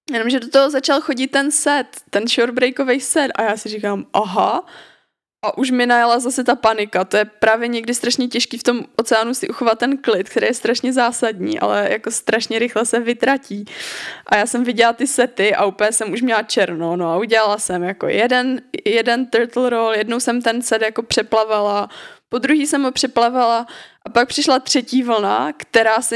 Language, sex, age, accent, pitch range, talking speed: Czech, female, 20-39, native, 215-250 Hz, 195 wpm